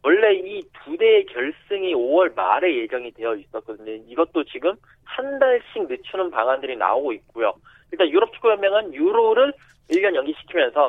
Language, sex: Korean, male